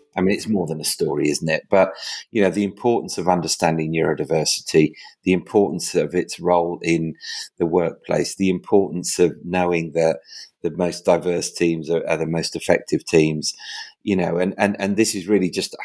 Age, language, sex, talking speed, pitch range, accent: 30-49, English, male, 185 wpm, 80-95 Hz, British